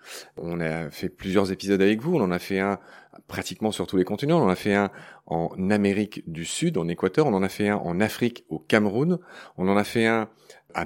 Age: 30-49